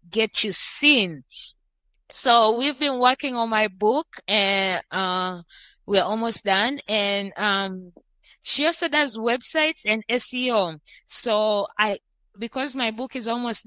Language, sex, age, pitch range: English, female, 20-39, 215-280 Hz